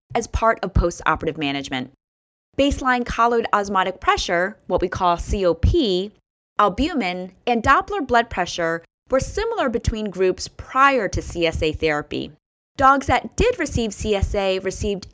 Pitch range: 175-260 Hz